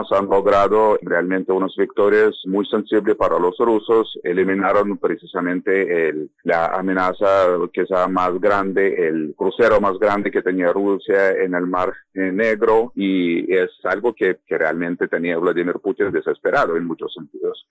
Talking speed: 145 wpm